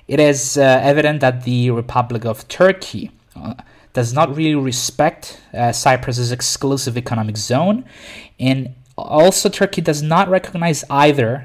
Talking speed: 135 wpm